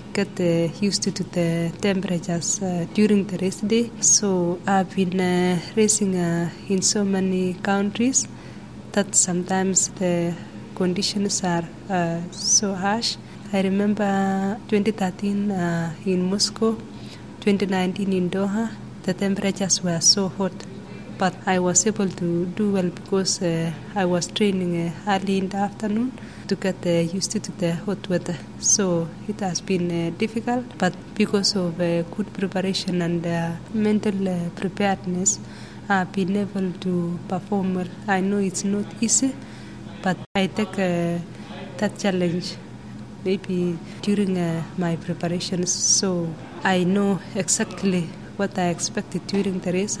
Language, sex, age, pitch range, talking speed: English, female, 20-39, 175-200 Hz, 140 wpm